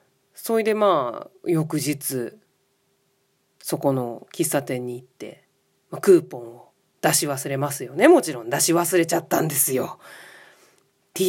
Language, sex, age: Japanese, female, 40-59